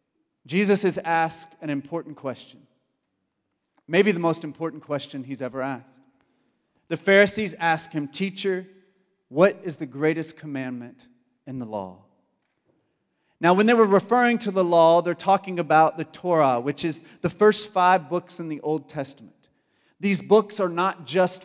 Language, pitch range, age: English, 155-195 Hz, 40-59